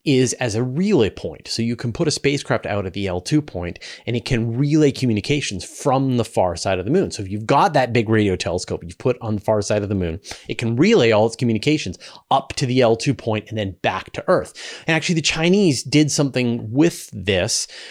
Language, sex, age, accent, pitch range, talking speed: English, male, 30-49, American, 100-135 Hz, 230 wpm